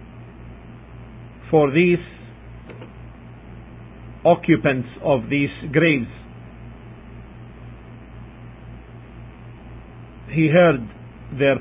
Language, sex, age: English, male, 50-69